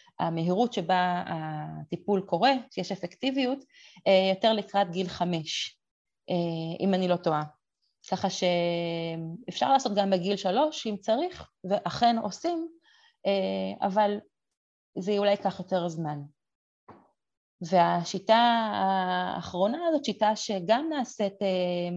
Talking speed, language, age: 100 wpm, Hebrew, 30-49